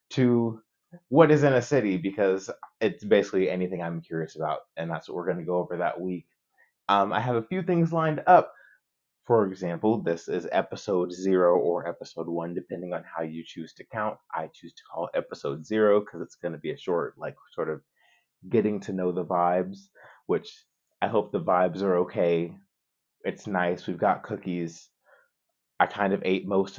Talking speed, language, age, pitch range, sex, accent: 195 wpm, English, 20-39, 90-140 Hz, male, American